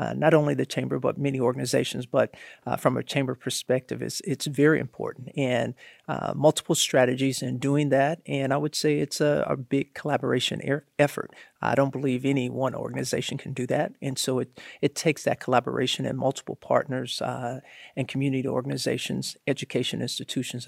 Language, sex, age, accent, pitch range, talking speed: English, male, 50-69, American, 130-150 Hz, 175 wpm